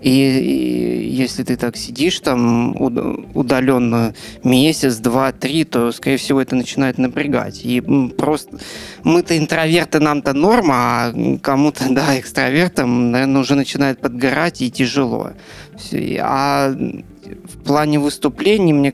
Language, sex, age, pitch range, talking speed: Russian, male, 20-39, 130-160 Hz, 115 wpm